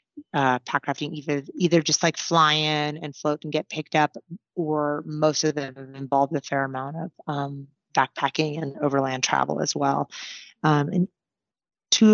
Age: 30-49